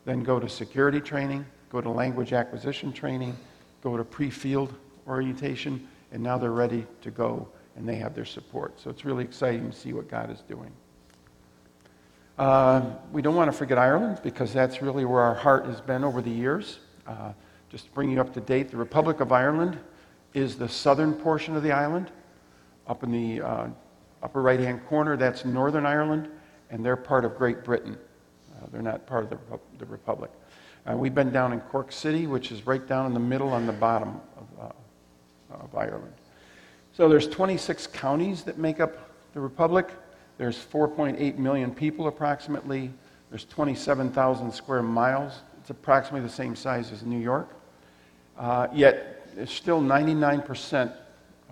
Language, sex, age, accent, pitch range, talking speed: English, male, 50-69, American, 115-145 Hz, 170 wpm